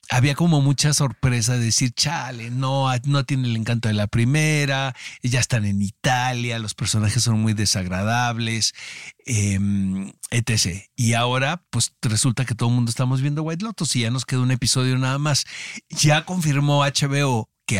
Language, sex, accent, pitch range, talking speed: Spanish, male, Mexican, 110-140 Hz, 170 wpm